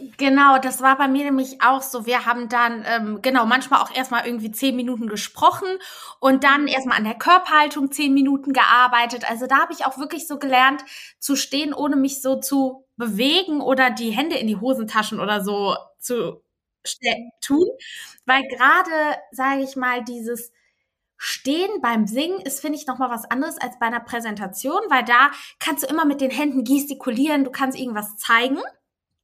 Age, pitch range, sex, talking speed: 20-39, 245-305 Hz, female, 180 wpm